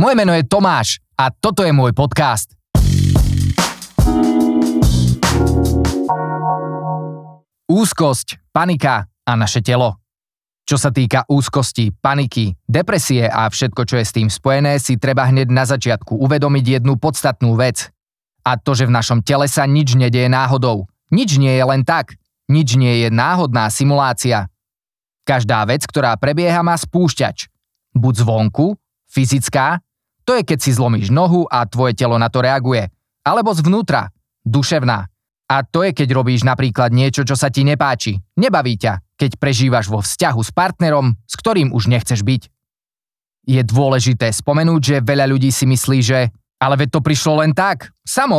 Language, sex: Slovak, male